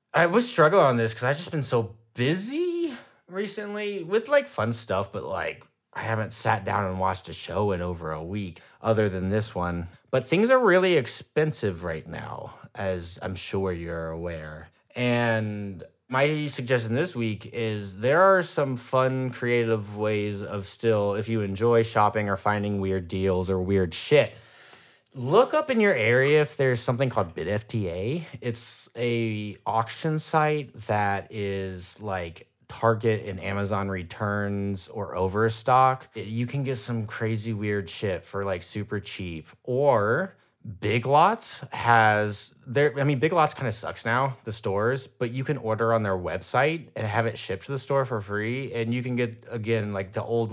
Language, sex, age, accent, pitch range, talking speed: English, male, 20-39, American, 100-130 Hz, 170 wpm